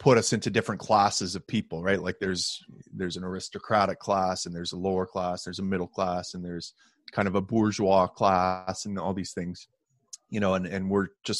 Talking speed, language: 210 wpm, English